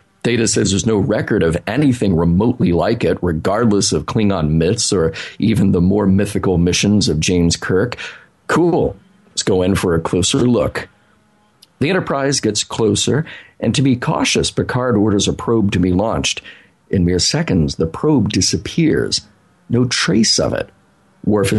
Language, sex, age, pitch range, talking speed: English, male, 40-59, 90-120 Hz, 160 wpm